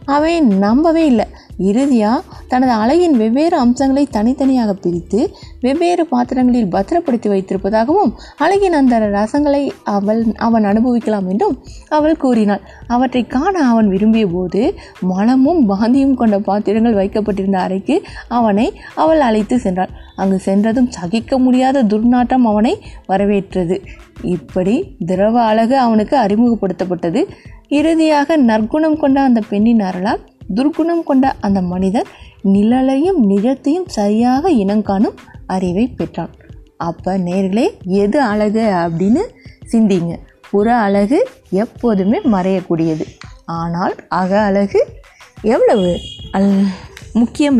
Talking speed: 100 wpm